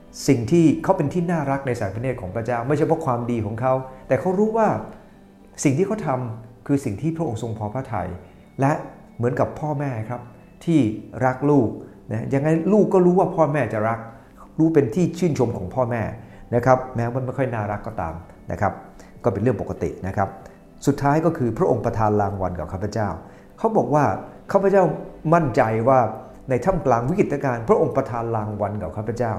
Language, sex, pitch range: English, male, 105-135 Hz